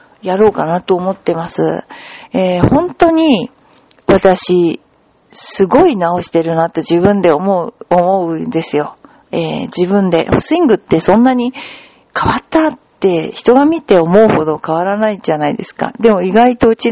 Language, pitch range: Japanese, 180-265 Hz